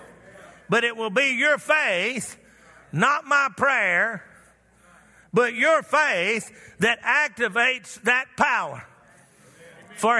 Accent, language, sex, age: American, English, male, 50-69